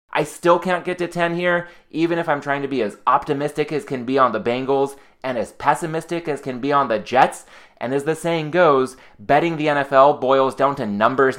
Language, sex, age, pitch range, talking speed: English, male, 20-39, 130-155 Hz, 220 wpm